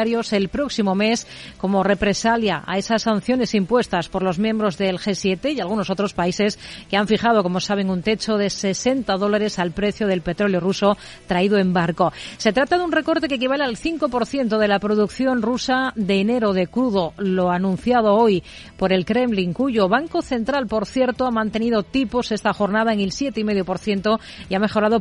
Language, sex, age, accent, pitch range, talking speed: Spanish, female, 40-59, Spanish, 195-235 Hz, 180 wpm